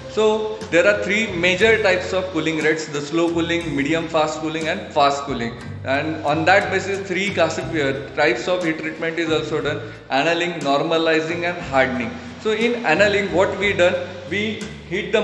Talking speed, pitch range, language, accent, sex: 170 wpm, 160-205 Hz, Marathi, native, male